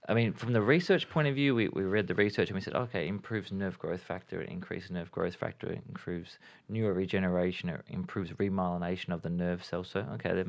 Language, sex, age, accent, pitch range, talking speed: English, male, 20-39, Australian, 90-105 Hz, 230 wpm